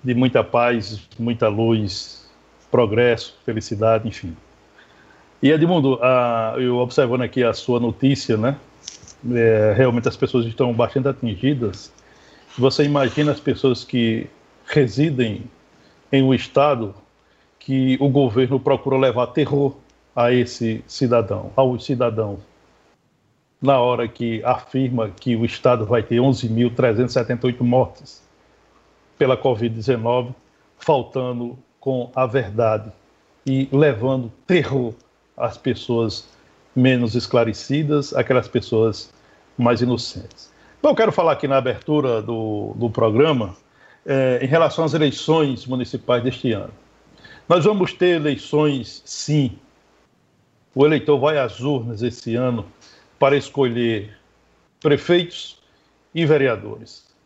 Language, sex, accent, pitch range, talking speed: Portuguese, male, Brazilian, 115-135 Hz, 115 wpm